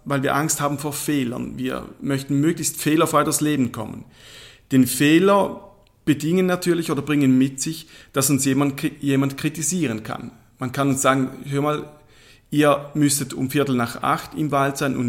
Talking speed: 170 wpm